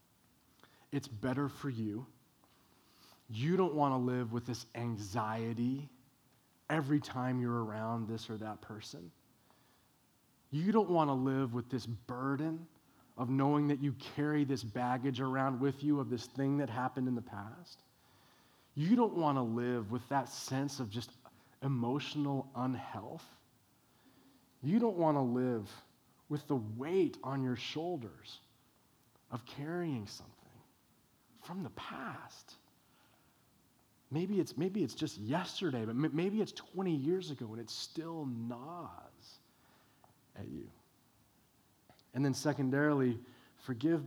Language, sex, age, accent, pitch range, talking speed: English, male, 30-49, American, 120-145 Hz, 130 wpm